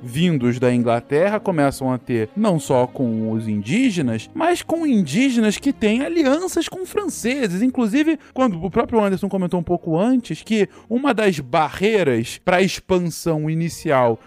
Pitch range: 130-220 Hz